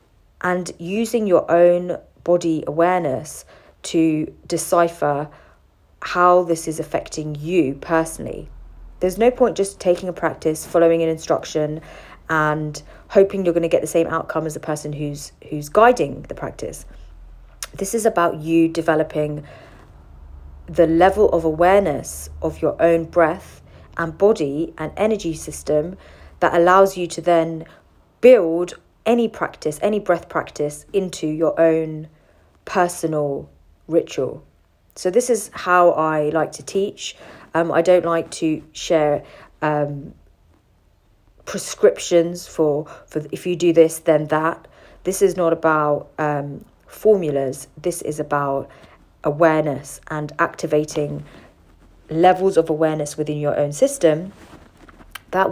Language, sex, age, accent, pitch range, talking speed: English, female, 40-59, British, 150-175 Hz, 130 wpm